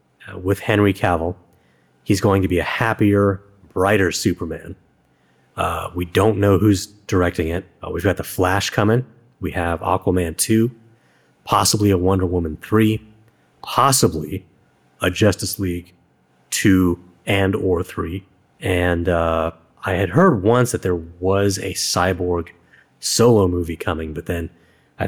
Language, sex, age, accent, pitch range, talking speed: English, male, 30-49, American, 85-100 Hz, 140 wpm